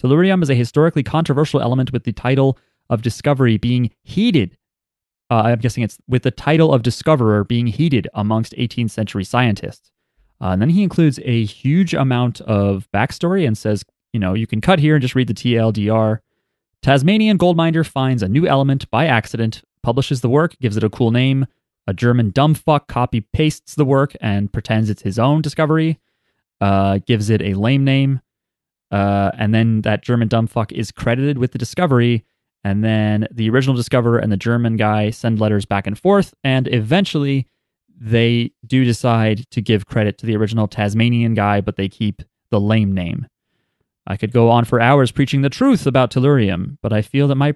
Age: 30-49